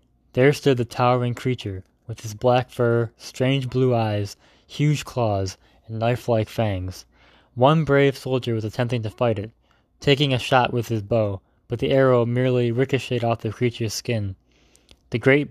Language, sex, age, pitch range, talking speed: English, male, 20-39, 110-130 Hz, 165 wpm